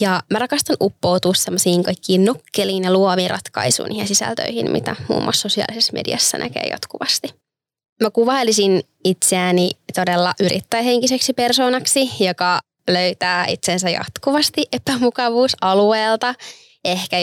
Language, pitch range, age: Finnish, 180-245 Hz, 20-39